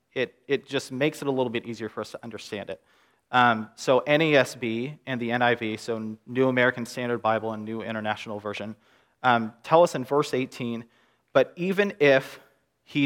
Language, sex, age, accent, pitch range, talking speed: English, male, 30-49, American, 110-135 Hz, 180 wpm